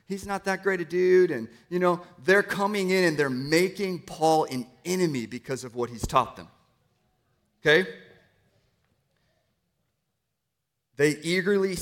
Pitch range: 120-155 Hz